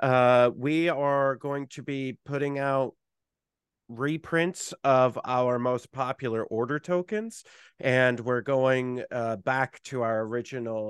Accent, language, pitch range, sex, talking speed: American, English, 115-140 Hz, male, 125 wpm